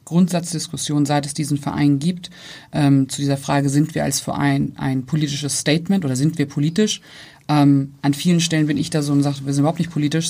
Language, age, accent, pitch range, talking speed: German, 30-49, German, 140-160 Hz, 210 wpm